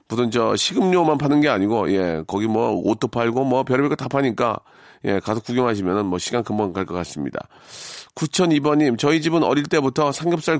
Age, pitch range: 40-59, 125-160 Hz